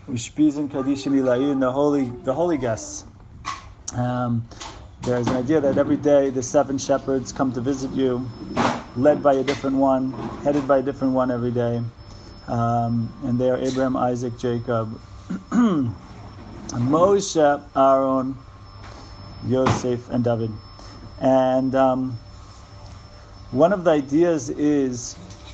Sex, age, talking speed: male, 40-59, 115 wpm